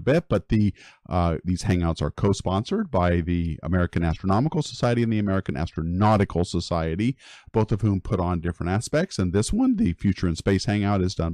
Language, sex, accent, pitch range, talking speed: English, male, American, 90-125 Hz, 185 wpm